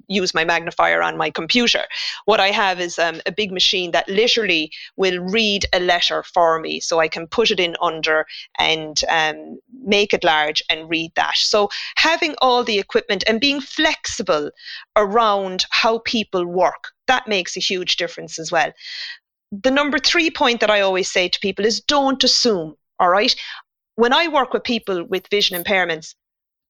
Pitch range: 185-245 Hz